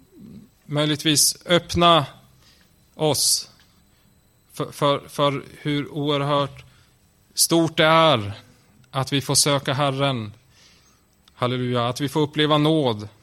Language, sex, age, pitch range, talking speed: Swedish, male, 20-39, 120-140 Hz, 100 wpm